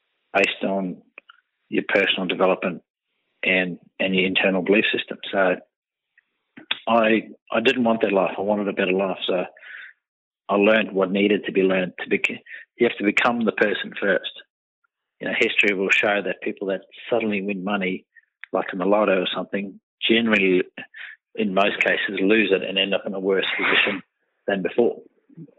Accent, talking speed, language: Australian, 165 wpm, English